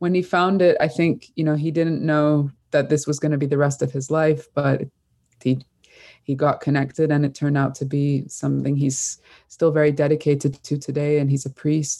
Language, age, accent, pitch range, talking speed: English, 20-39, Canadian, 135-155 Hz, 220 wpm